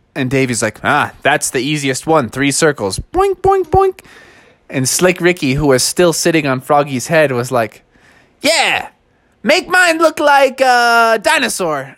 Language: English